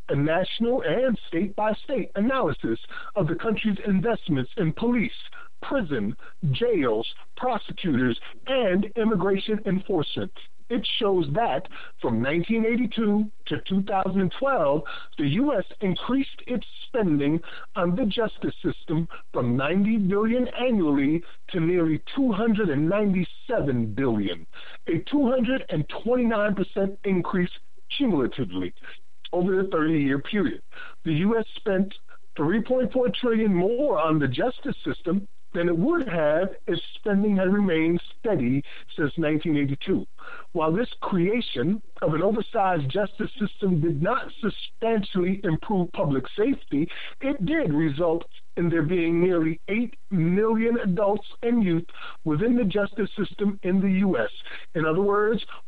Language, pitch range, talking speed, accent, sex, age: English, 165-230 Hz, 120 wpm, American, male, 50-69